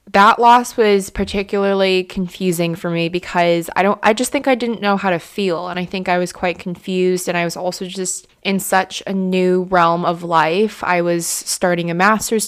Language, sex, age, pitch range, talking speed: English, female, 20-39, 175-195 Hz, 205 wpm